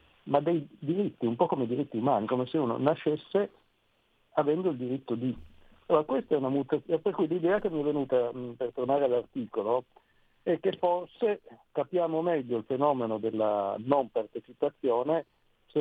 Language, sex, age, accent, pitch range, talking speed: Italian, male, 50-69, native, 115-150 Hz, 165 wpm